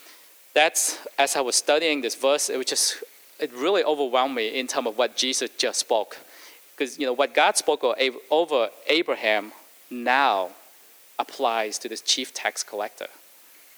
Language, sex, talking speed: English, male, 155 wpm